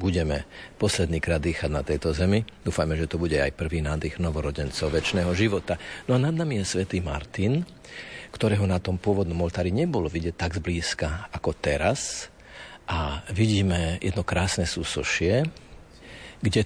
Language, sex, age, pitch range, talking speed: Slovak, male, 50-69, 80-100 Hz, 140 wpm